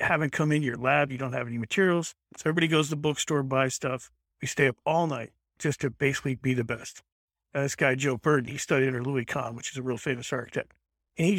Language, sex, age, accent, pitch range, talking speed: English, male, 50-69, American, 125-155 Hz, 240 wpm